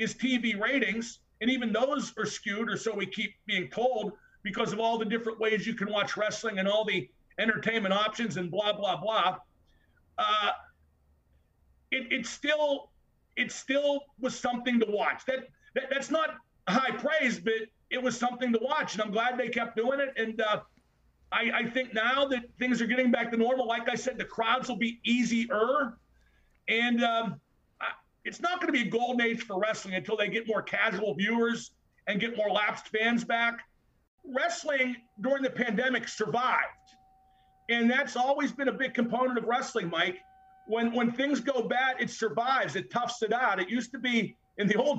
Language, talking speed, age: English, 185 wpm, 50-69